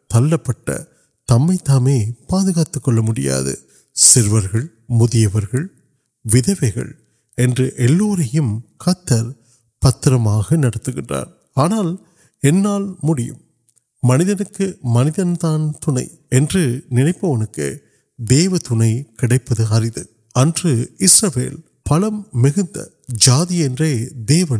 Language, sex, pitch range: Urdu, male, 120-160 Hz